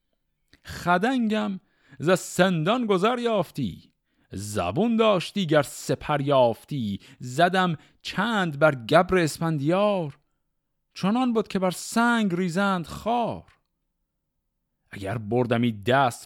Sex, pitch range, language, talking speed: male, 115-170 Hz, Persian, 95 wpm